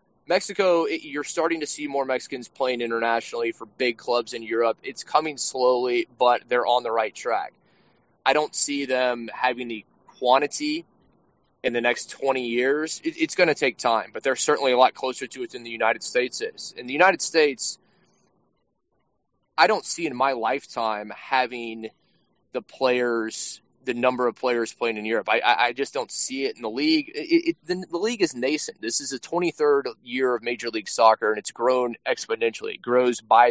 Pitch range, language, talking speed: 120-165 Hz, English, 190 wpm